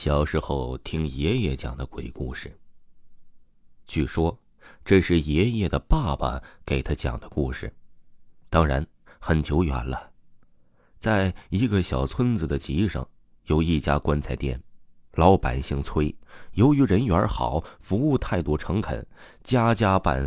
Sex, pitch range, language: male, 70-90 Hz, Chinese